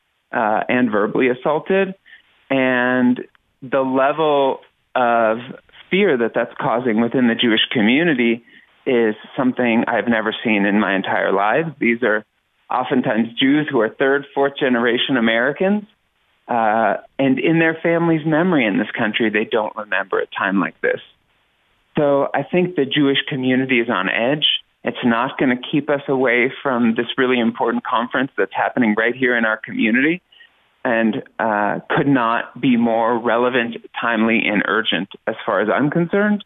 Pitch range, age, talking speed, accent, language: 115-150 Hz, 30-49, 155 wpm, American, English